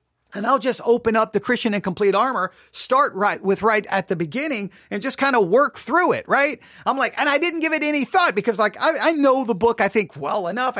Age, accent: 40-59, American